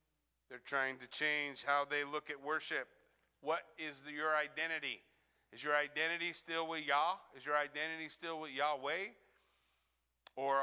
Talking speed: 150 wpm